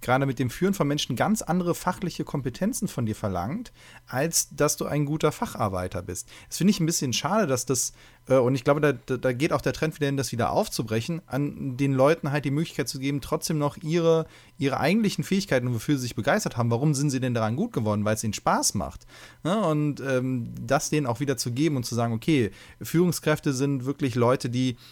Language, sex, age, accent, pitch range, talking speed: German, male, 30-49, German, 120-145 Hz, 220 wpm